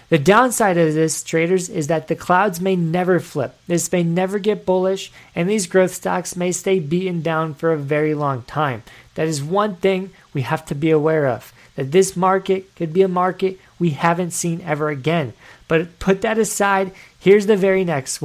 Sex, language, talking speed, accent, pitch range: male, English, 195 wpm, American, 150-190 Hz